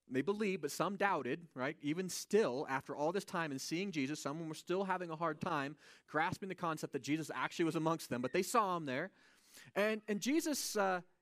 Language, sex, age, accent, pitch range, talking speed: English, male, 30-49, American, 130-200 Hz, 215 wpm